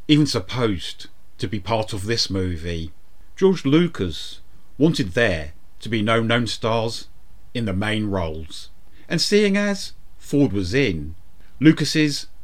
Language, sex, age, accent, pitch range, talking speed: English, male, 40-59, British, 90-135 Hz, 135 wpm